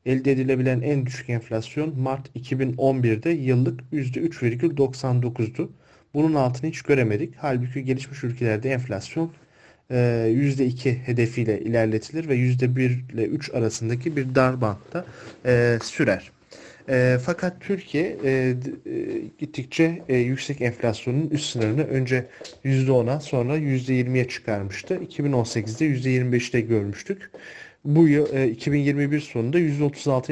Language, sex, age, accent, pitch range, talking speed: Turkish, male, 40-59, native, 120-155 Hz, 95 wpm